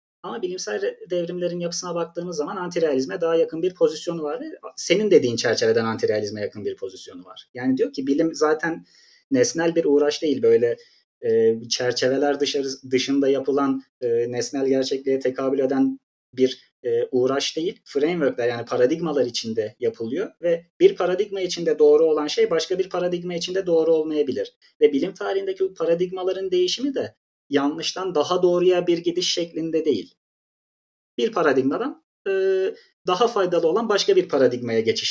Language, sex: Turkish, male